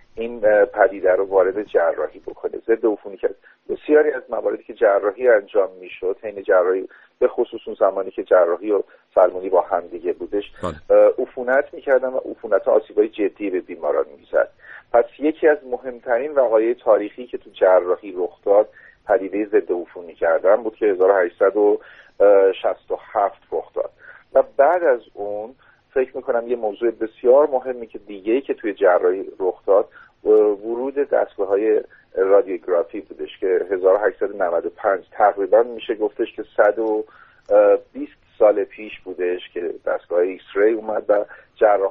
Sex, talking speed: male, 135 wpm